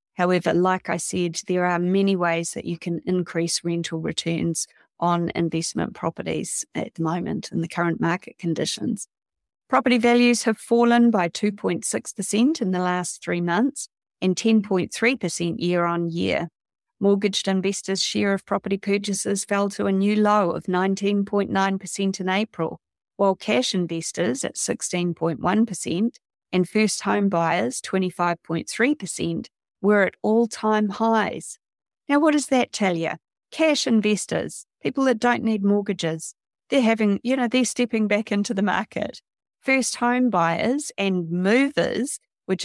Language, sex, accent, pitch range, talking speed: English, female, Australian, 175-225 Hz, 140 wpm